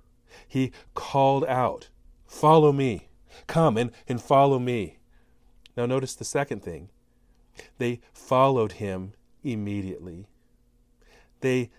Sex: male